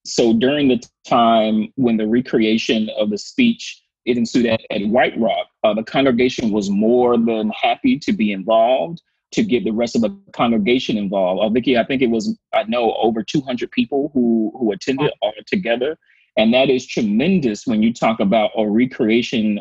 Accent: American